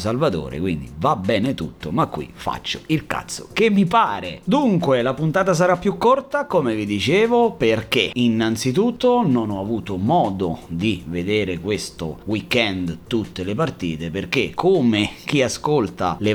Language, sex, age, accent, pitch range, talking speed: Italian, male, 30-49, native, 100-135 Hz, 145 wpm